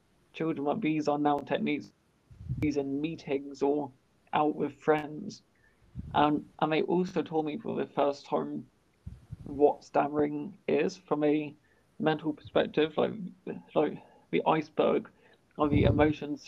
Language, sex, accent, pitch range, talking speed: English, male, British, 145-155 Hz, 140 wpm